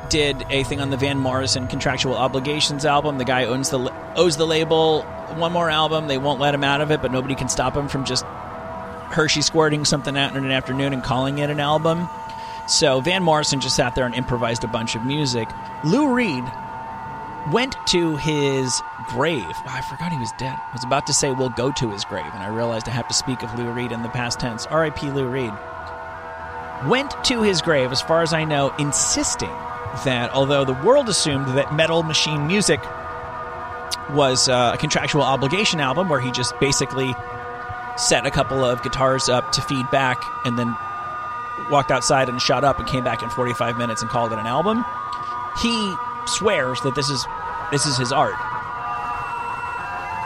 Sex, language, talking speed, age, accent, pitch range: male, English, 190 wpm, 30-49, American, 120-160 Hz